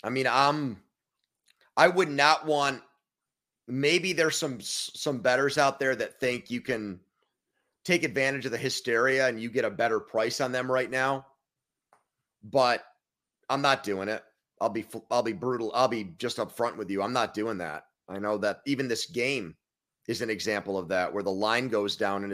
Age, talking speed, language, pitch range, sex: 30-49, 195 wpm, English, 110-140 Hz, male